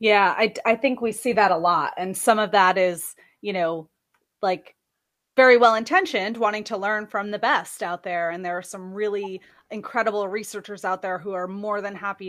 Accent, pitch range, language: American, 180-215 Hz, English